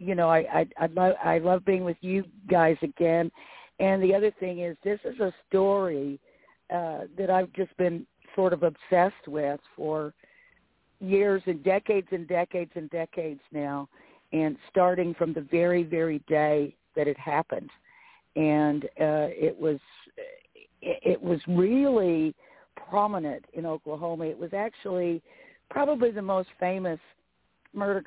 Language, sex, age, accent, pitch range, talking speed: English, female, 50-69, American, 160-190 Hz, 145 wpm